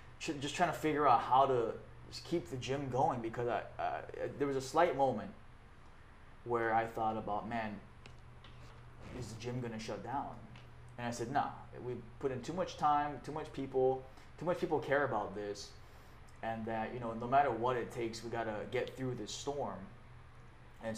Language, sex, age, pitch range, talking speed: English, male, 20-39, 110-135 Hz, 190 wpm